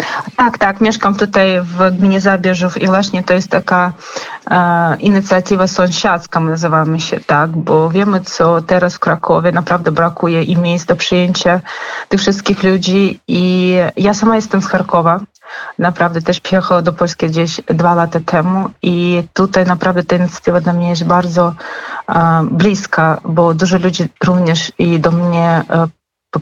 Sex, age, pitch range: female, 30-49, 165-185 Hz